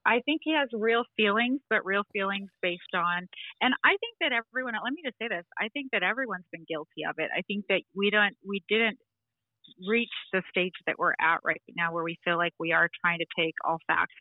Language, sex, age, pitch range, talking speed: English, female, 30-49, 170-195 Hz, 240 wpm